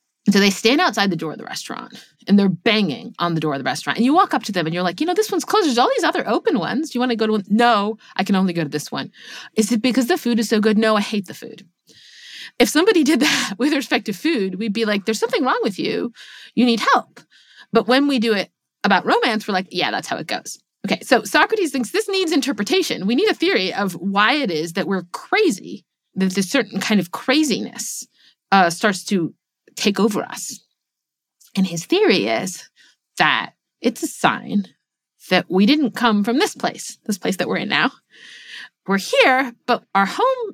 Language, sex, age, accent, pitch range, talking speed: English, female, 30-49, American, 190-265 Hz, 230 wpm